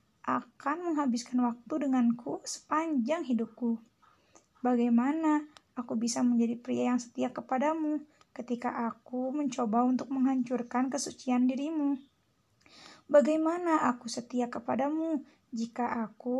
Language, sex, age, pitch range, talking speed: Indonesian, female, 20-39, 240-290 Hz, 100 wpm